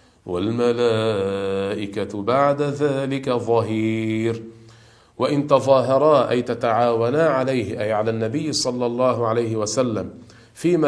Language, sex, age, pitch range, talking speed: Arabic, male, 50-69, 110-140 Hz, 95 wpm